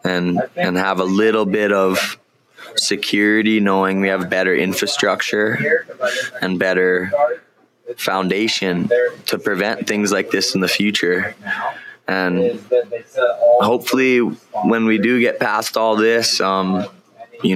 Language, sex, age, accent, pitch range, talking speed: English, male, 20-39, American, 95-110 Hz, 120 wpm